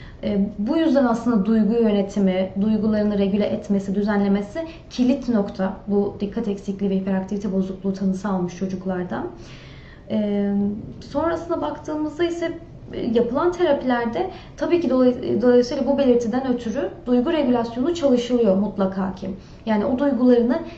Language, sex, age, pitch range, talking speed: Turkish, female, 30-49, 205-260 Hz, 115 wpm